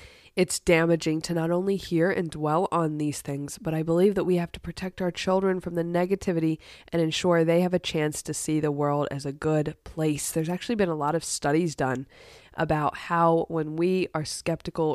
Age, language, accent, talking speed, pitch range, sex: 20-39, English, American, 210 wpm, 150-180 Hz, female